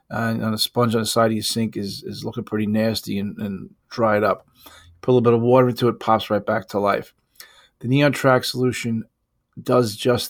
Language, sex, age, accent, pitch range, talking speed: English, male, 40-59, American, 110-125 Hz, 220 wpm